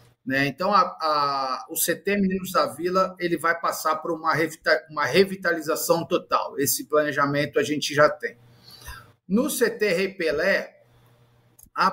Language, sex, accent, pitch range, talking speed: Portuguese, male, Brazilian, 155-195 Hz, 135 wpm